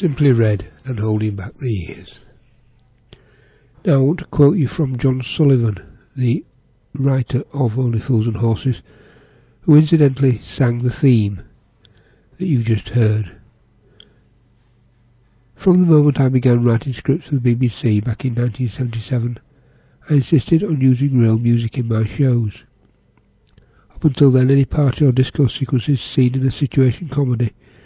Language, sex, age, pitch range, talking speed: English, male, 60-79, 115-135 Hz, 145 wpm